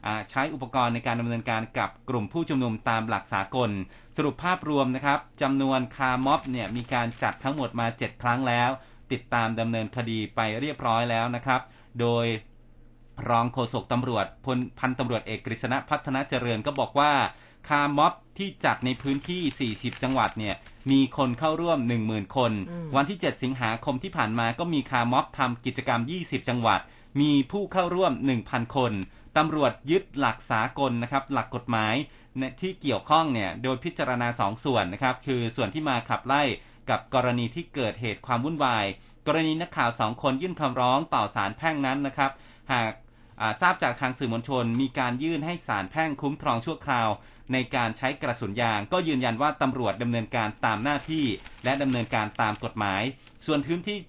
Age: 30-49